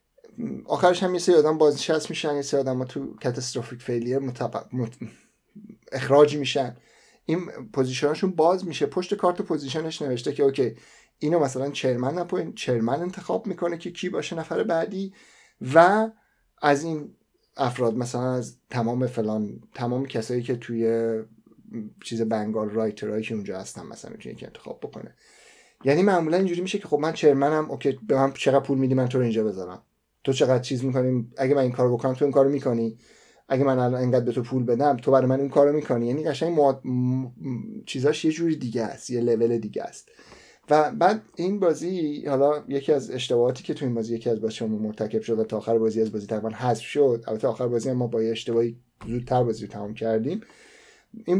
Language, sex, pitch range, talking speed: Persian, male, 120-160 Hz, 180 wpm